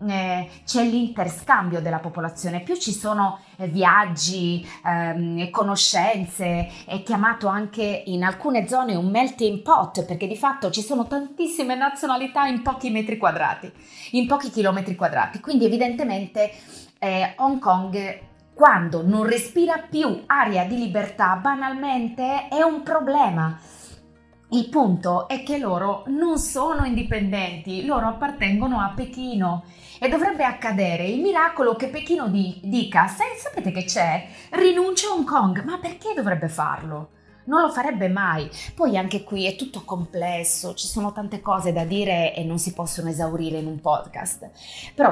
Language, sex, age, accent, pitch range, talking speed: Italian, female, 30-49, native, 175-245 Hz, 140 wpm